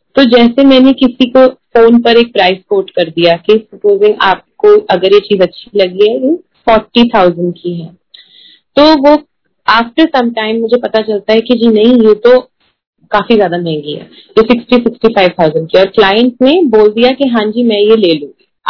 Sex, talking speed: female, 185 wpm